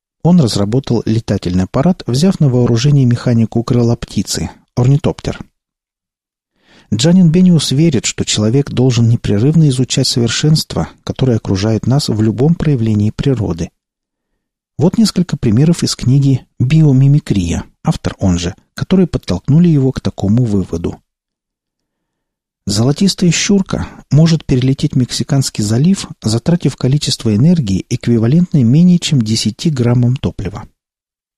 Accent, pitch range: native, 110-150 Hz